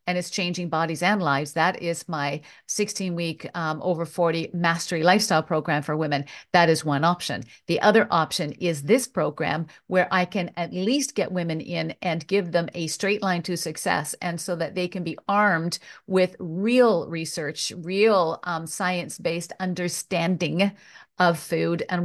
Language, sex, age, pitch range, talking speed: English, female, 50-69, 165-185 Hz, 165 wpm